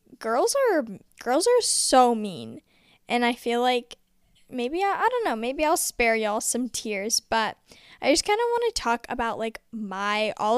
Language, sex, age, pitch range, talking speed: English, female, 10-29, 220-275 Hz, 185 wpm